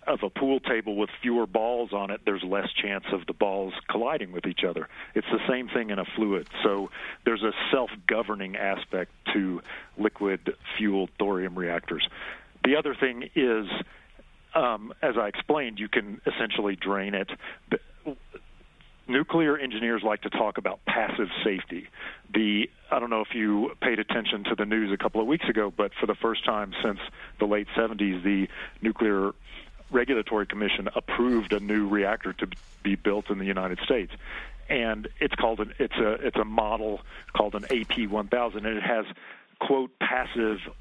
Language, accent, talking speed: English, American, 170 wpm